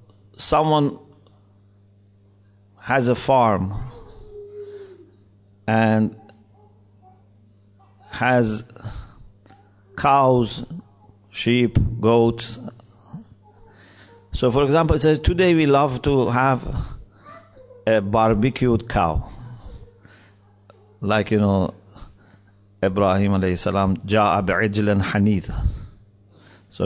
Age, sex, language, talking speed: 50-69, male, English, 70 wpm